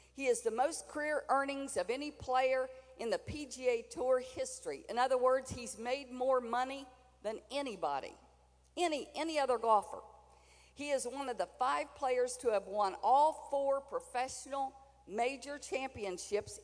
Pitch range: 215-320 Hz